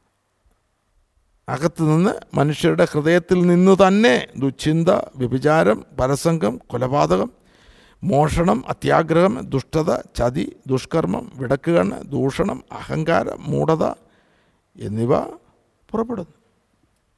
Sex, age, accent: male, 50-69, native